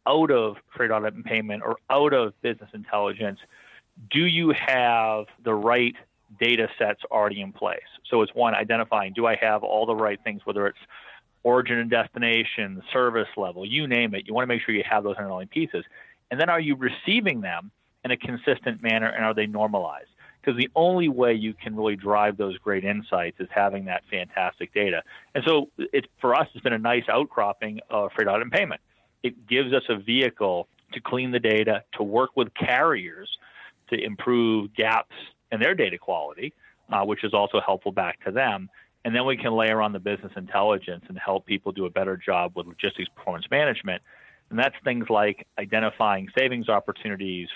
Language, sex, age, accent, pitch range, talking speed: English, male, 40-59, American, 100-125 Hz, 190 wpm